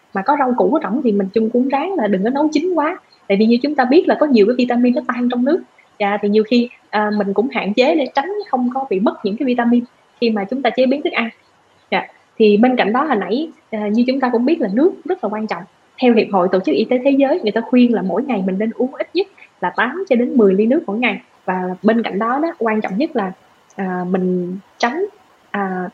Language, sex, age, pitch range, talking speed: Vietnamese, female, 20-39, 205-260 Hz, 270 wpm